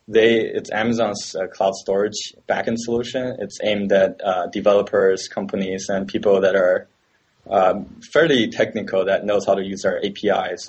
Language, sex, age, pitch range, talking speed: English, male, 20-39, 95-110 Hz, 155 wpm